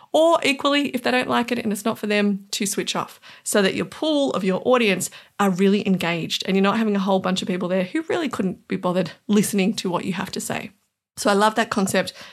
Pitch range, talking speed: 190-250 Hz, 255 wpm